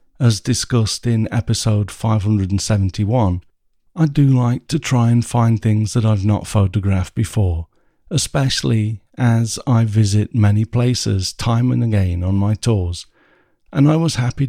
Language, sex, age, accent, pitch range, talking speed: English, male, 50-69, British, 100-120 Hz, 140 wpm